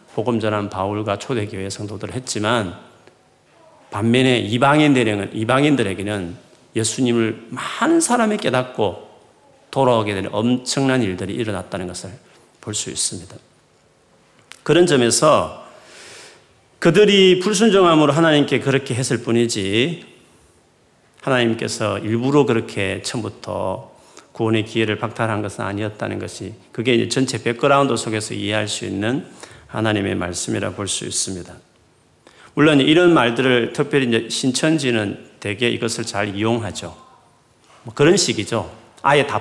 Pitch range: 105-135 Hz